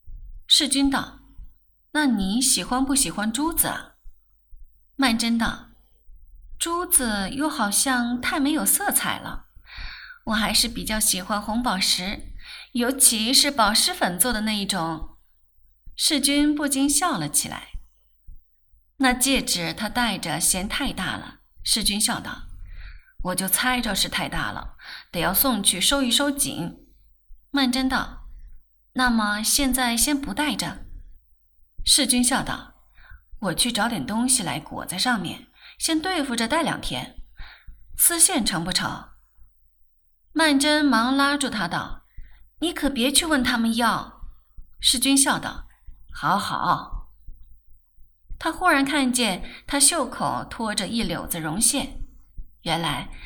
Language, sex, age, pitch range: Chinese, female, 20-39, 200-275 Hz